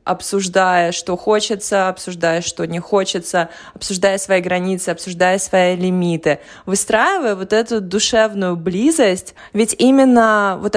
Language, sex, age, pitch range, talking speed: Russian, female, 20-39, 180-220 Hz, 115 wpm